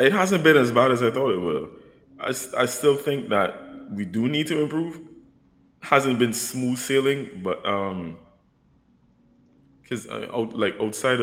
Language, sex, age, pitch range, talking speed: English, male, 20-39, 95-125 Hz, 165 wpm